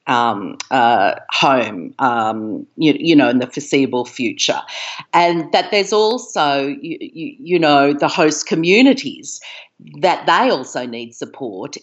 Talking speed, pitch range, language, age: 135 wpm, 140-180 Hz, English, 50-69